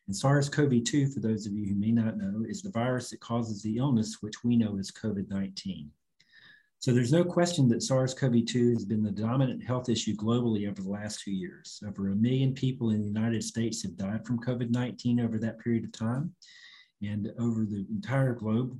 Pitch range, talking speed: 105-125 Hz, 200 wpm